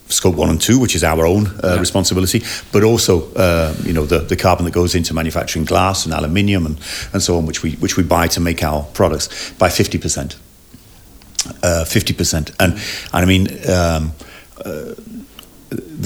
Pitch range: 80-95 Hz